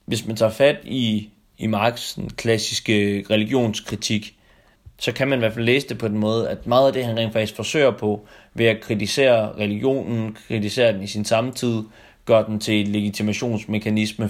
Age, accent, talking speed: 30-49, native, 185 wpm